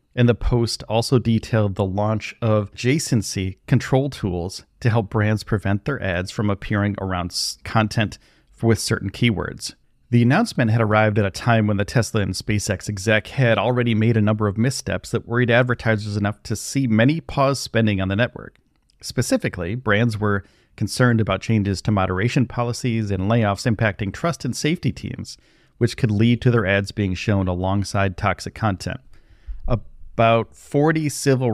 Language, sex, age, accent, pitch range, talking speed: English, male, 40-59, American, 100-120 Hz, 165 wpm